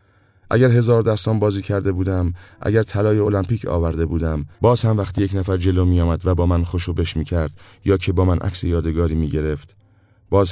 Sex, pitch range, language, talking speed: male, 85-105 Hz, Persian, 190 wpm